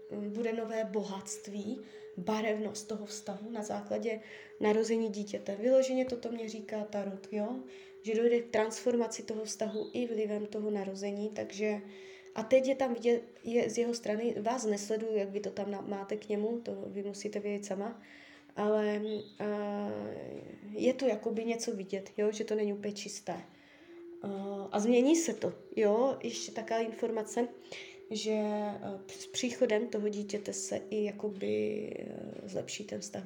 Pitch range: 200-235 Hz